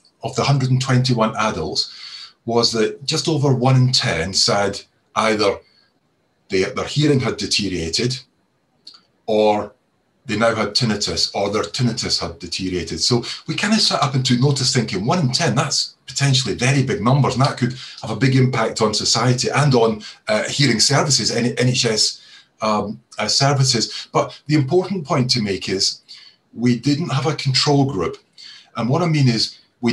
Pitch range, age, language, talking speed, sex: 110-135 Hz, 30-49, English, 160 wpm, male